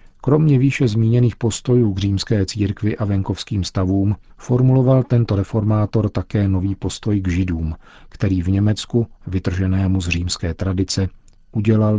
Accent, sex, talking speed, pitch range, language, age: native, male, 130 wpm, 95-110 Hz, Czech, 50-69